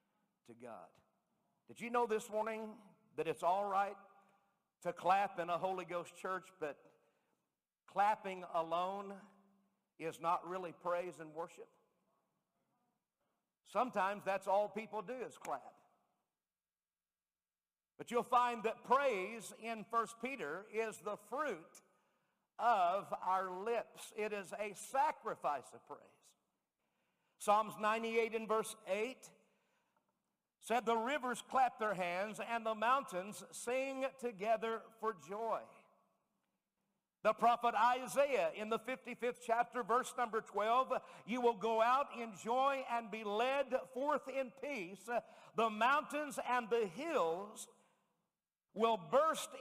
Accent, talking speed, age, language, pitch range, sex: American, 120 wpm, 50-69, English, 185-245 Hz, male